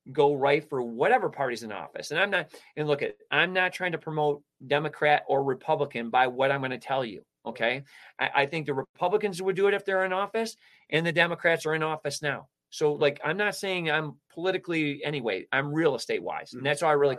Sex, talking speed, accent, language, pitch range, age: male, 225 wpm, American, English, 125-175 Hz, 30-49